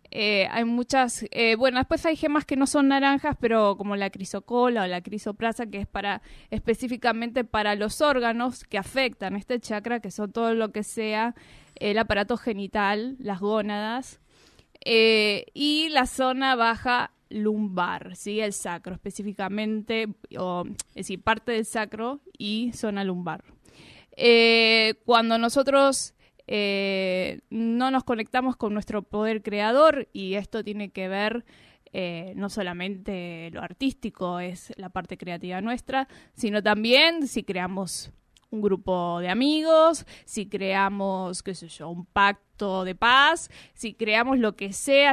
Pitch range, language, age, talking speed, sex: 200-255 Hz, Spanish, 20-39, 140 wpm, female